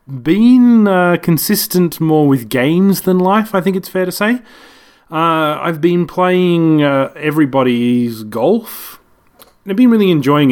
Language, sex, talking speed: English, male, 150 wpm